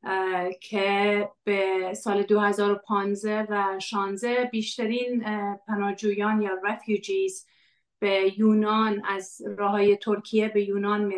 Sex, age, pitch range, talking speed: female, 30-49, 190-215 Hz, 95 wpm